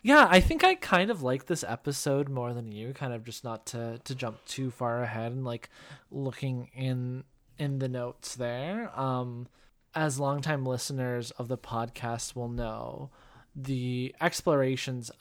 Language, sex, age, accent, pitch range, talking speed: English, male, 20-39, American, 125-140 Hz, 160 wpm